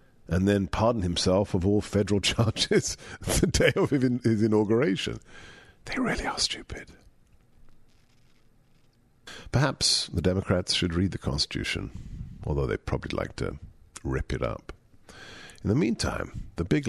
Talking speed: 130 wpm